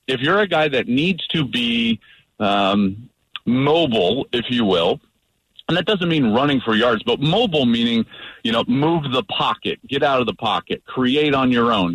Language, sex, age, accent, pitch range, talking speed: English, male, 40-59, American, 120-185 Hz, 185 wpm